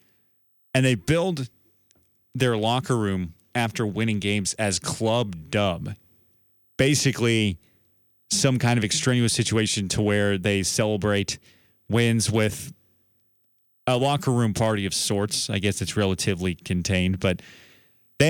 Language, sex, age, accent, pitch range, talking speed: English, male, 30-49, American, 95-120 Hz, 120 wpm